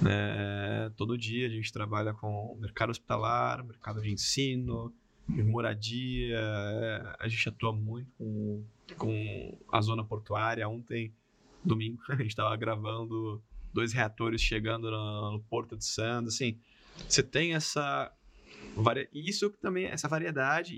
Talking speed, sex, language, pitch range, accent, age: 140 wpm, male, Portuguese, 110-135 Hz, Brazilian, 20-39